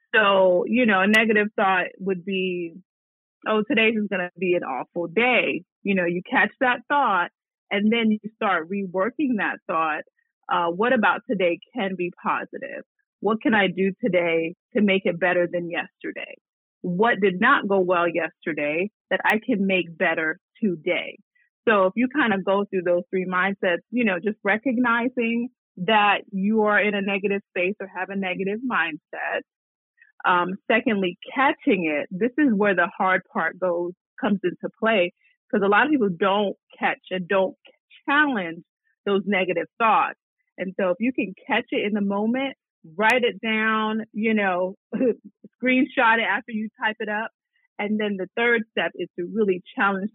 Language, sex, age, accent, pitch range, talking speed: English, female, 30-49, American, 185-240 Hz, 170 wpm